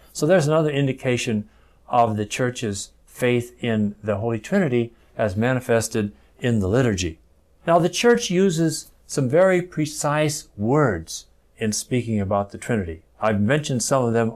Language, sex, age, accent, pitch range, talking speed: English, male, 60-79, American, 105-150 Hz, 145 wpm